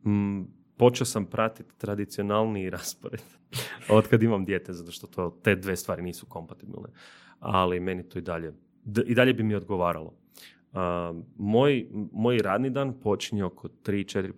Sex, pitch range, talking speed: male, 90-115 Hz, 160 wpm